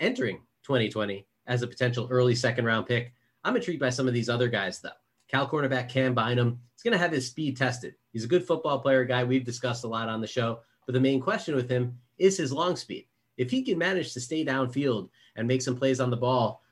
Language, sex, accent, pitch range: English, male, American, 120-135 Hz